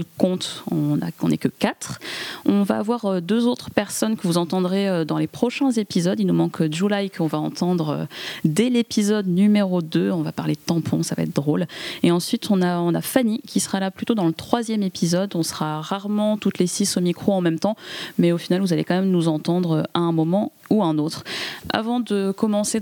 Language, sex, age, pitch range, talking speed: French, female, 20-39, 165-205 Hz, 220 wpm